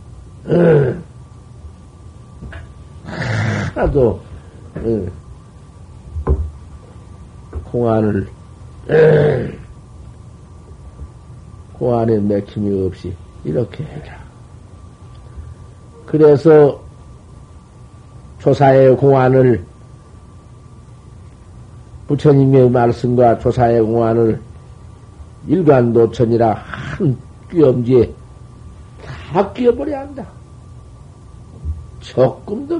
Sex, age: male, 50-69